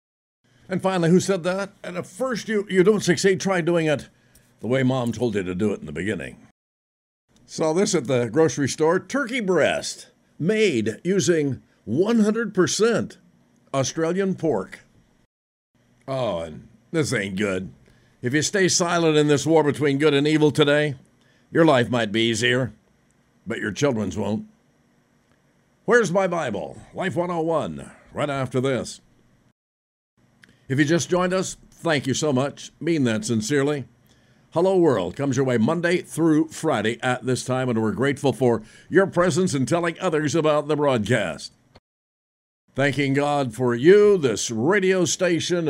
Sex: male